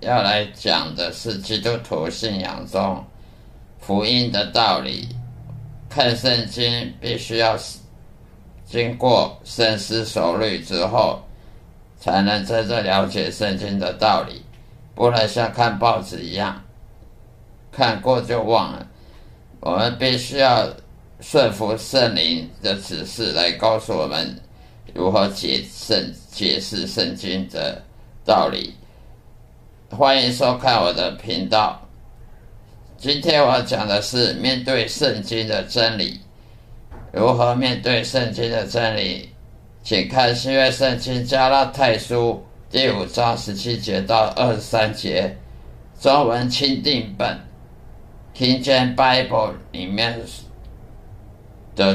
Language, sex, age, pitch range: Chinese, male, 50-69, 105-125 Hz